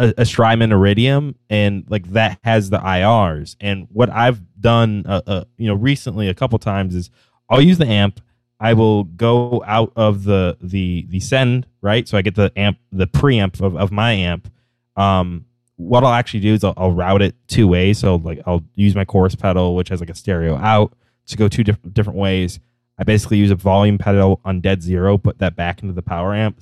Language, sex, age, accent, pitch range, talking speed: English, male, 20-39, American, 95-115 Hz, 215 wpm